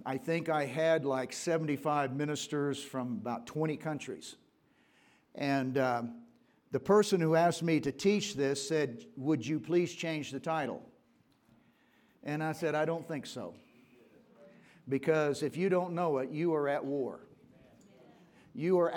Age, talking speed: 50-69, 150 wpm